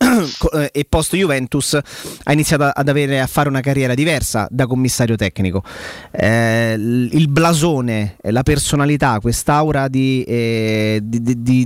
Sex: male